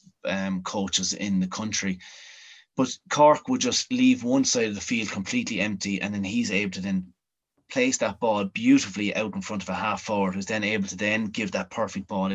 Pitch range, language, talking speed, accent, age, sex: 100-115 Hz, English, 210 wpm, Irish, 30-49, male